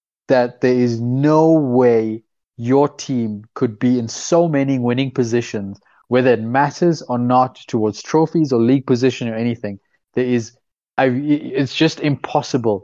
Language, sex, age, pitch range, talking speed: English, male, 20-39, 115-150 Hz, 145 wpm